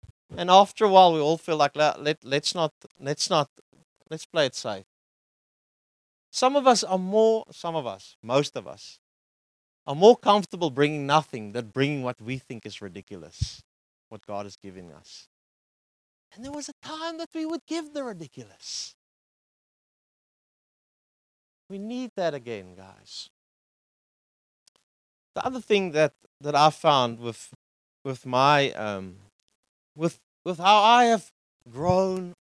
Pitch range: 110-185 Hz